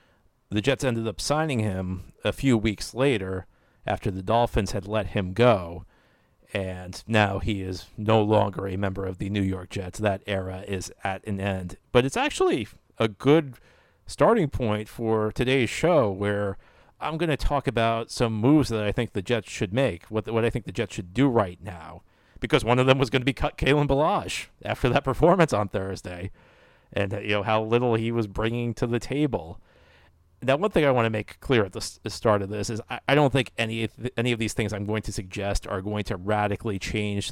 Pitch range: 100-120 Hz